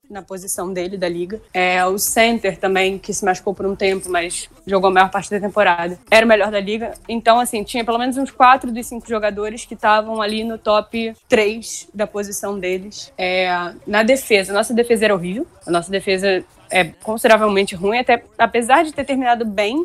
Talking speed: 200 wpm